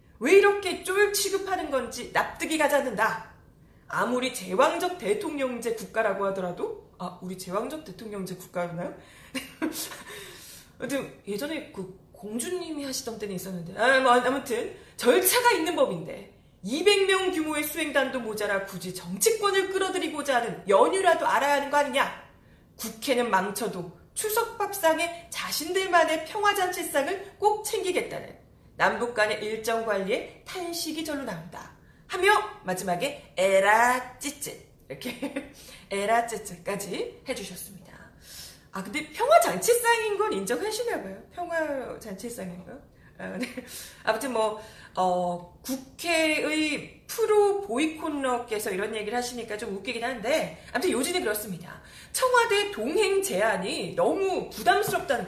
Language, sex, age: Korean, female, 30-49